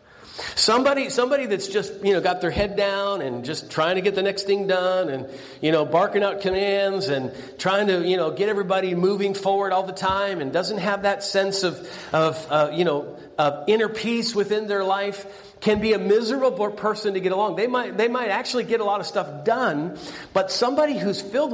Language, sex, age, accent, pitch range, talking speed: English, male, 50-69, American, 165-210 Hz, 210 wpm